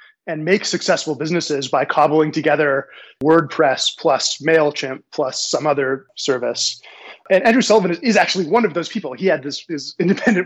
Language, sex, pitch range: English, male, 145-180 Hz